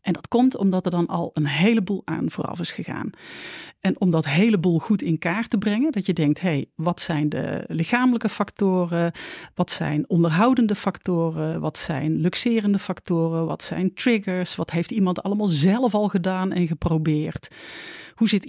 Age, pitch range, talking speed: 40-59, 165-220 Hz, 175 wpm